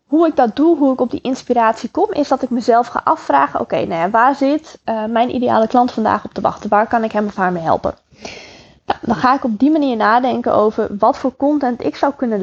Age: 20-39